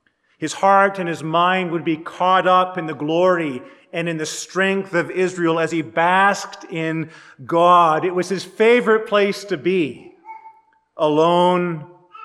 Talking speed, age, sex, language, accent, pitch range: 150 wpm, 40-59, male, English, American, 155-190 Hz